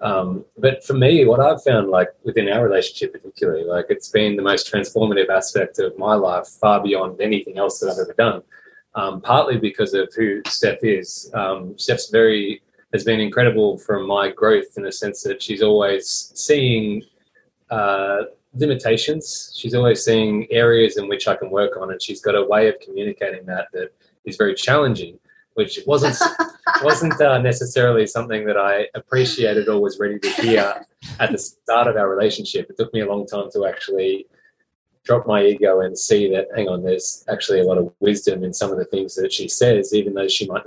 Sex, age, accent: male, 20-39, Australian